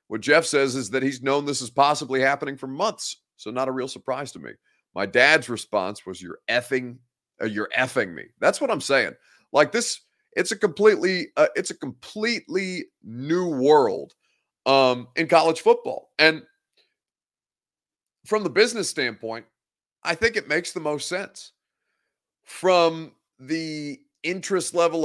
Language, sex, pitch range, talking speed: English, male, 130-170 Hz, 155 wpm